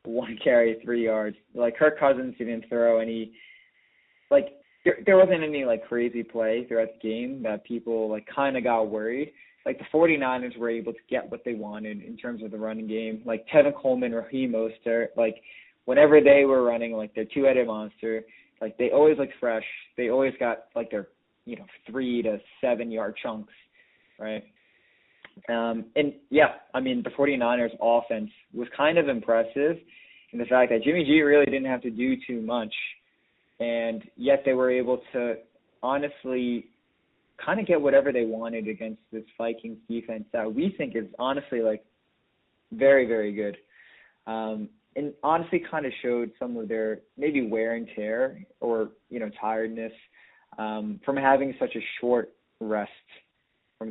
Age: 20-39